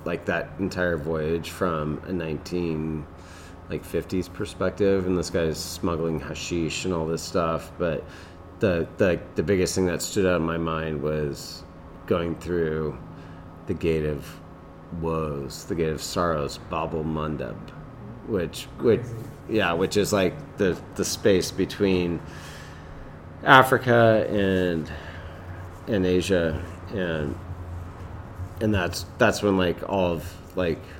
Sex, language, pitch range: male, English, 80-95 Hz